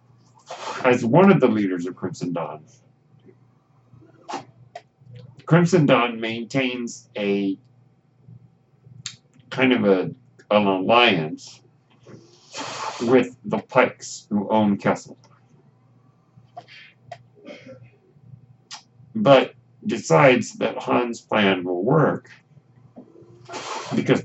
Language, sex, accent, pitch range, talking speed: English, male, American, 110-130 Hz, 75 wpm